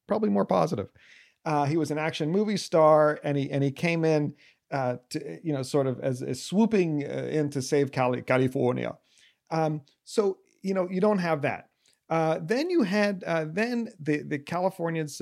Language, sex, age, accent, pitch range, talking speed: English, male, 40-59, American, 130-175 Hz, 185 wpm